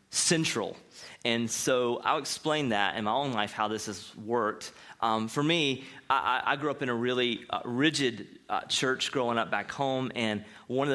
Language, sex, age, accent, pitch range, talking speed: English, male, 30-49, American, 115-140 Hz, 190 wpm